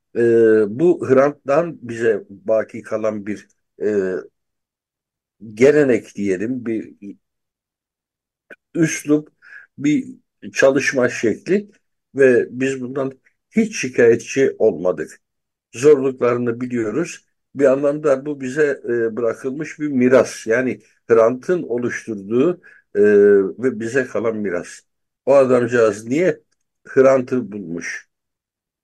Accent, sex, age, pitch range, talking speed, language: native, male, 60-79, 110-150 Hz, 90 wpm, Turkish